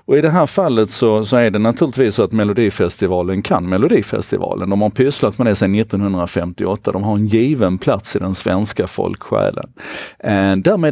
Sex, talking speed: male, 180 wpm